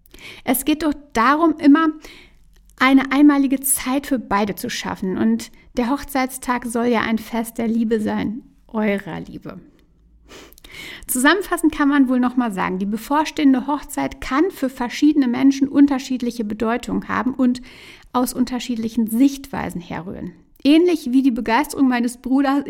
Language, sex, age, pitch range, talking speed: German, female, 60-79, 225-280 Hz, 135 wpm